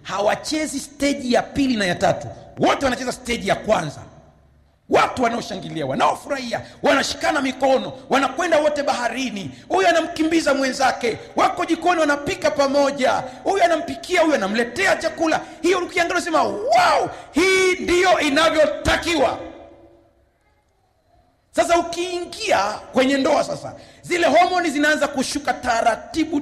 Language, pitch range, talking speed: Swahili, 230-325 Hz, 110 wpm